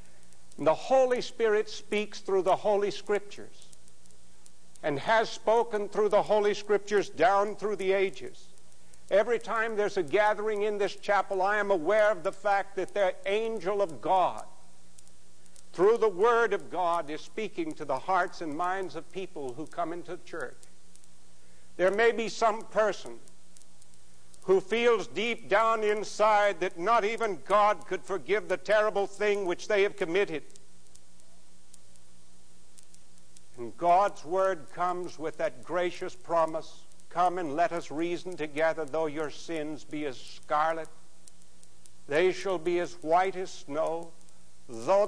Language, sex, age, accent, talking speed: English, male, 60-79, American, 145 wpm